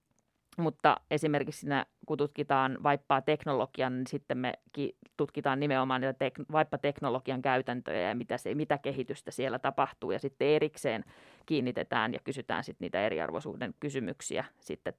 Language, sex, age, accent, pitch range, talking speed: Finnish, female, 30-49, native, 140-175 Hz, 135 wpm